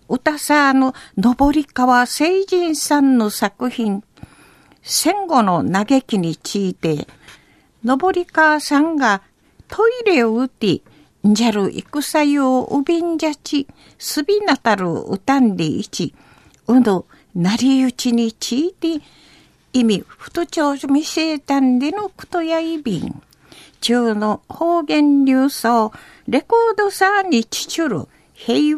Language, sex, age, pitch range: Japanese, female, 60-79, 235-320 Hz